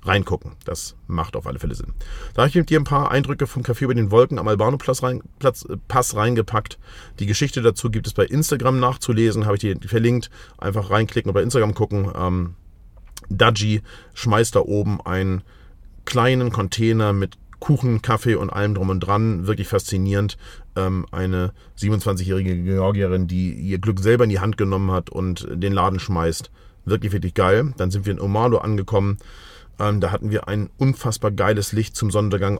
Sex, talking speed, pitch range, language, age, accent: male, 170 wpm, 95-110 Hz, German, 40-59, German